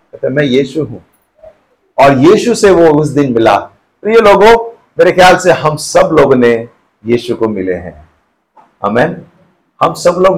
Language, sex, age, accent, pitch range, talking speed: Hindi, male, 50-69, native, 150-210 Hz, 160 wpm